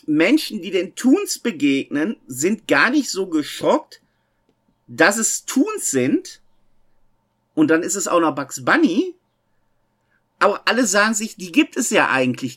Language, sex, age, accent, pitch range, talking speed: German, male, 50-69, German, 185-280 Hz, 150 wpm